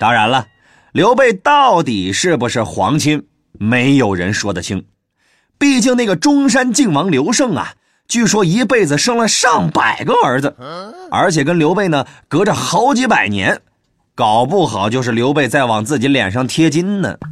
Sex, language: male, Chinese